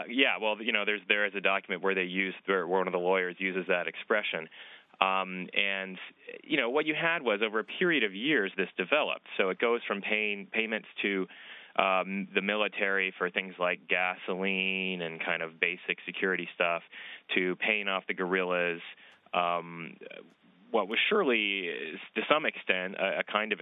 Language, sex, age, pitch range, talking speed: English, male, 30-49, 90-100 Hz, 180 wpm